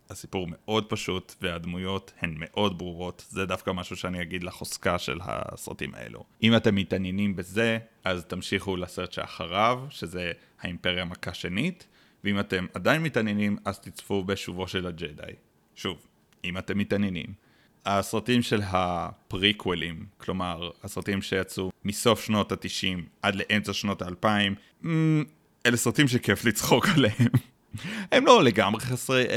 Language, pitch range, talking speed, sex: Hebrew, 90-110 Hz, 130 wpm, male